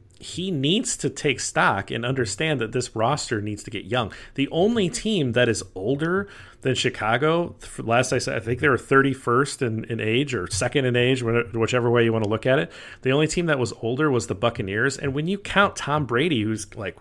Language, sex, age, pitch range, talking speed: English, male, 40-59, 115-145 Hz, 220 wpm